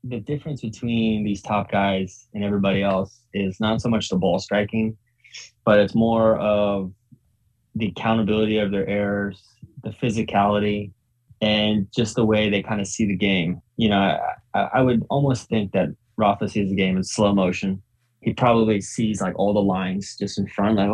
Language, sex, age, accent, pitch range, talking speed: English, male, 20-39, American, 100-115 Hz, 180 wpm